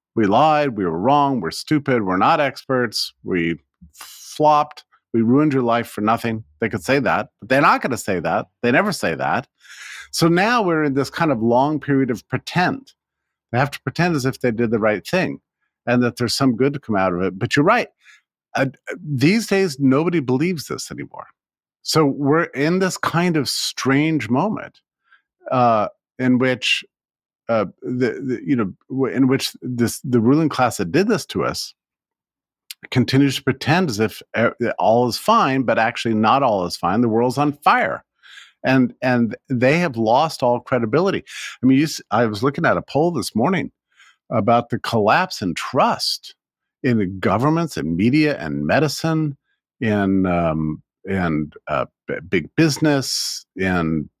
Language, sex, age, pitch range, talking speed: English, male, 50-69, 115-150 Hz, 175 wpm